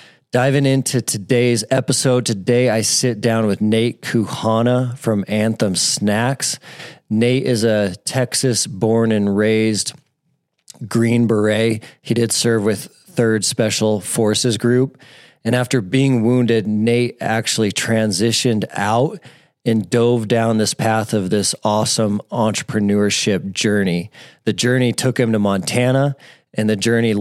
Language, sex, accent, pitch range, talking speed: English, male, American, 105-125 Hz, 130 wpm